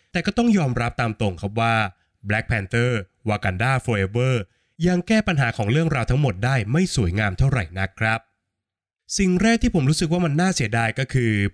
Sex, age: male, 20-39